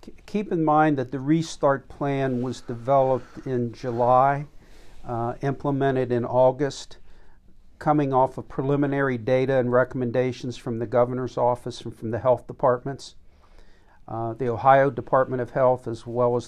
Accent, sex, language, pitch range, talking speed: American, male, English, 120-140 Hz, 145 wpm